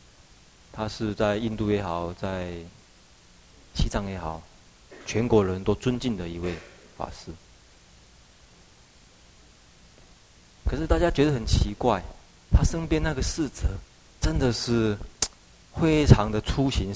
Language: Chinese